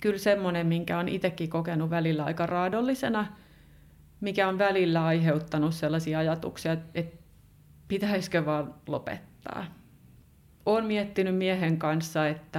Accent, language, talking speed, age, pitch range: native, Finnish, 115 wpm, 30-49, 155-185 Hz